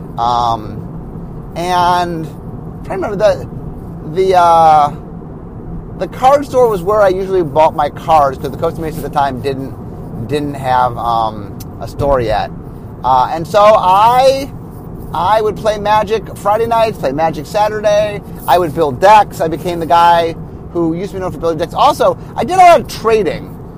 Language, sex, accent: English, male, American